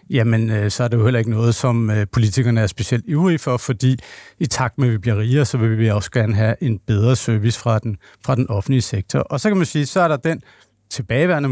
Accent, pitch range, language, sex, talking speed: native, 115-145 Hz, Danish, male, 245 wpm